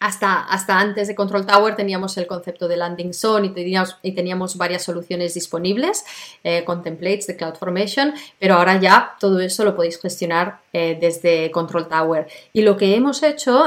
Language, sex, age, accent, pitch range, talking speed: Spanish, female, 30-49, Spanish, 190-240 Hz, 175 wpm